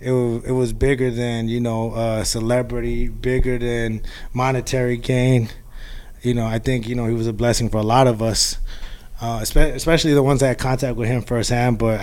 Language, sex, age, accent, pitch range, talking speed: English, male, 20-39, American, 115-130 Hz, 190 wpm